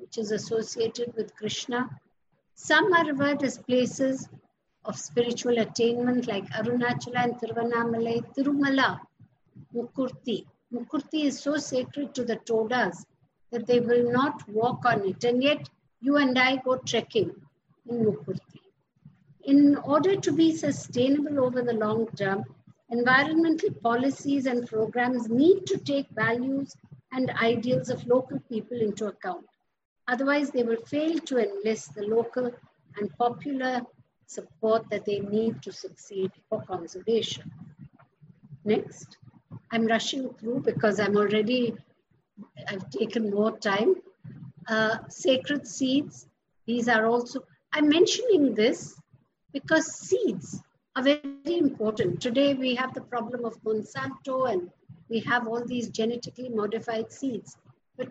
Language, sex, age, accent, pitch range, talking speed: English, female, 50-69, Indian, 220-270 Hz, 130 wpm